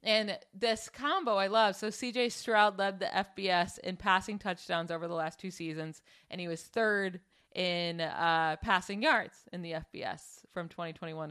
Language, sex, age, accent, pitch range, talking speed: English, female, 30-49, American, 175-220 Hz, 170 wpm